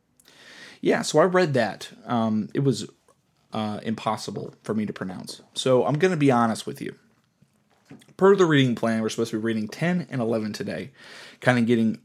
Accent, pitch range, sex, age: American, 110-130 Hz, male, 20-39